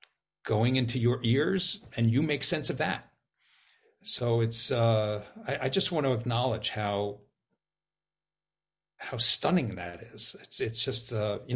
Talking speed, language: 150 wpm, English